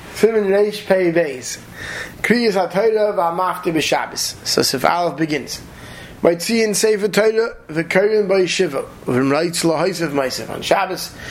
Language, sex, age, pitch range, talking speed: English, male, 20-39, 135-180 Hz, 70 wpm